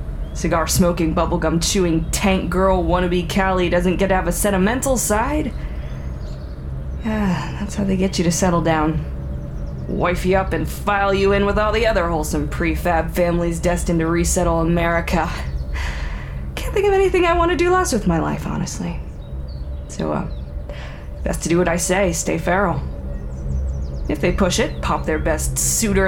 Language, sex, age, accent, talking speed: English, female, 20-39, American, 160 wpm